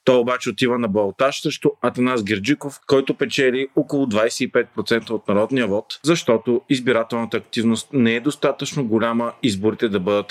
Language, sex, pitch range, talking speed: Bulgarian, male, 115-135 Hz, 145 wpm